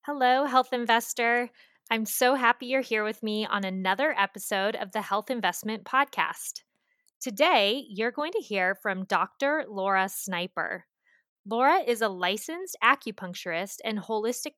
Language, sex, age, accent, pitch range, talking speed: English, female, 20-39, American, 195-255 Hz, 140 wpm